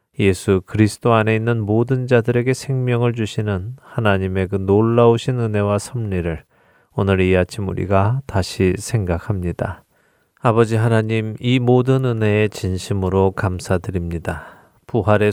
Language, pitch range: Korean, 95-120 Hz